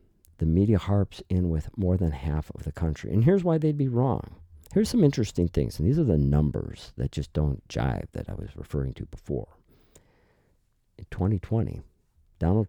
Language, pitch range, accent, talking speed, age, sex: English, 75-105 Hz, American, 185 wpm, 50-69, male